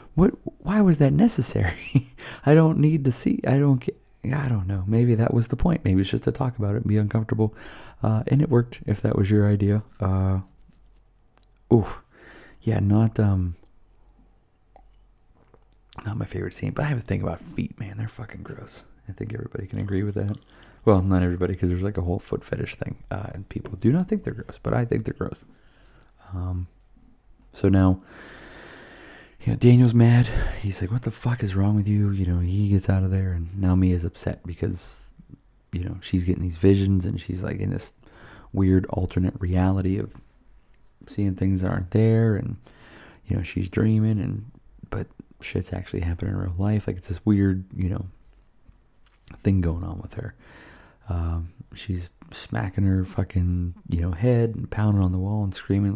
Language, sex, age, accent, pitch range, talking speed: English, male, 30-49, American, 95-115 Hz, 190 wpm